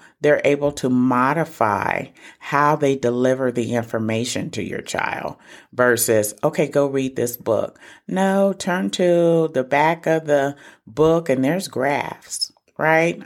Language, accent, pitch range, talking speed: English, American, 125-165 Hz, 135 wpm